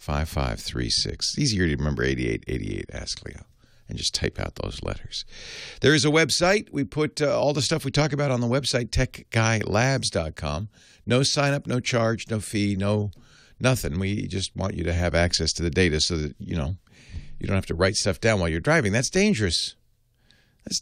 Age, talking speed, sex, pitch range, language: 50-69, 210 wpm, male, 100-130 Hz, English